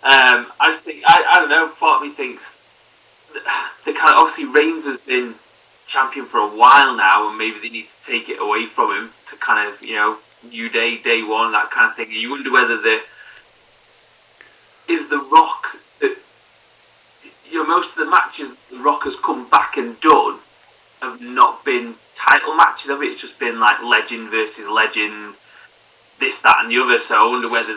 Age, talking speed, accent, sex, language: 30-49, 195 wpm, British, male, English